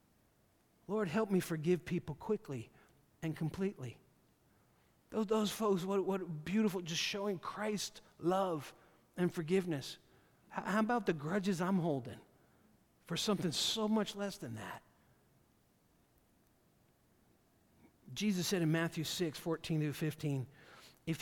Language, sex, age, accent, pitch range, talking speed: English, male, 50-69, American, 140-195 Hz, 120 wpm